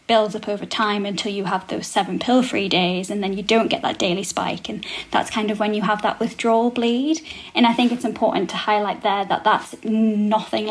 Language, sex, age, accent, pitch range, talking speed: English, female, 20-39, British, 205-235 Hz, 230 wpm